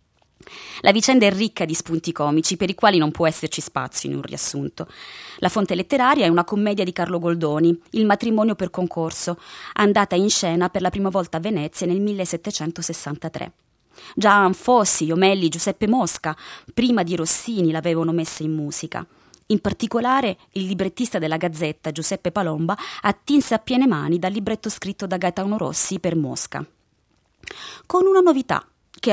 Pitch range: 170-220 Hz